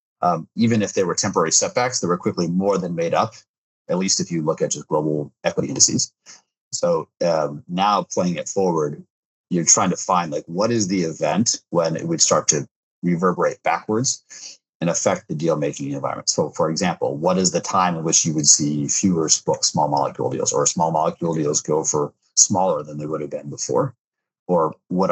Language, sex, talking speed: English, male, 190 wpm